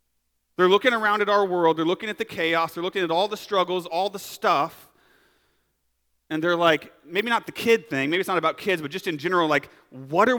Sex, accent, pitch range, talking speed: male, American, 140-200 Hz, 230 wpm